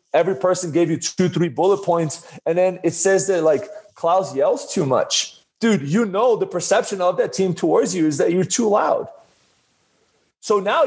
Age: 30-49